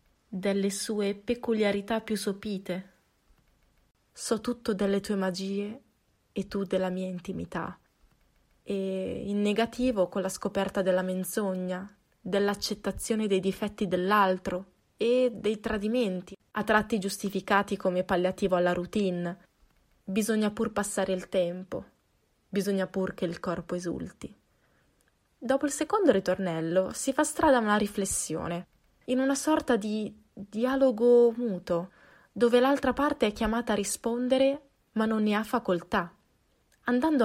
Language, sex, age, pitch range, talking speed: Italian, female, 20-39, 185-225 Hz, 125 wpm